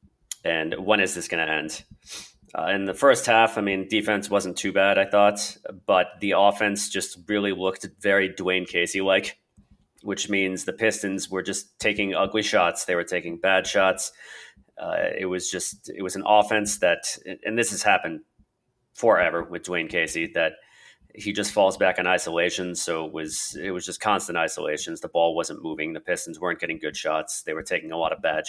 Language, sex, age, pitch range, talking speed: English, male, 30-49, 90-105 Hz, 200 wpm